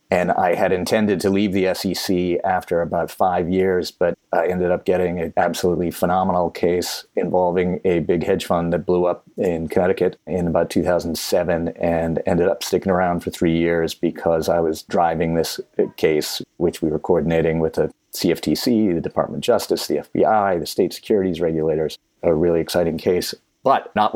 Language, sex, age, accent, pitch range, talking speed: English, male, 30-49, American, 85-95 Hz, 175 wpm